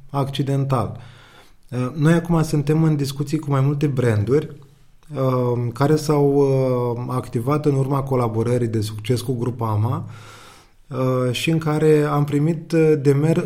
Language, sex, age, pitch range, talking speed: Romanian, male, 20-39, 120-150 Hz, 140 wpm